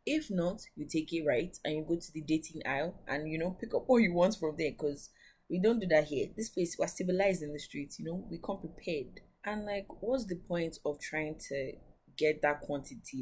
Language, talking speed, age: English, 240 wpm, 20-39